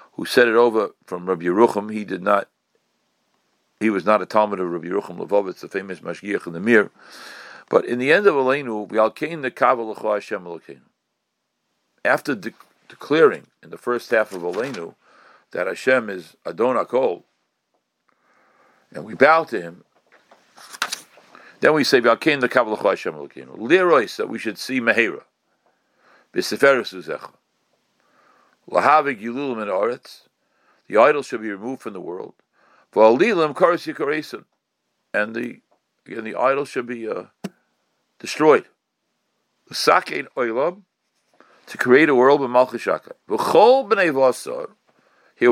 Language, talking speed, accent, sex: English, 140 wpm, American, male